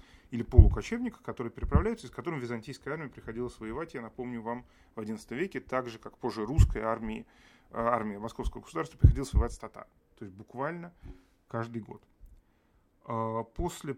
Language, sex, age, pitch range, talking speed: Russian, male, 30-49, 115-145 Hz, 150 wpm